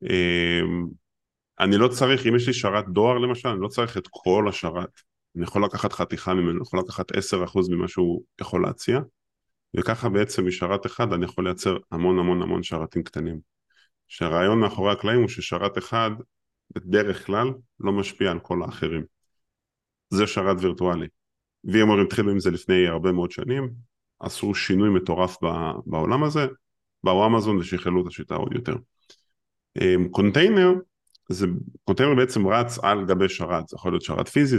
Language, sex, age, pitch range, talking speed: Hebrew, male, 20-39, 90-120 Hz, 160 wpm